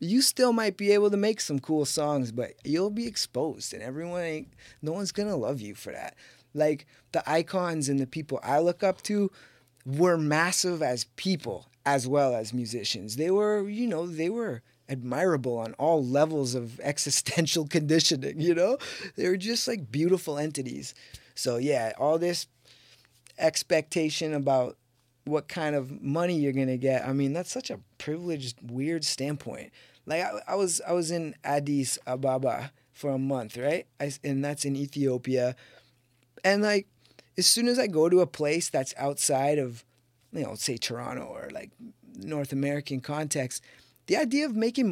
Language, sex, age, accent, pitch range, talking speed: English, male, 20-39, American, 135-180 Hz, 175 wpm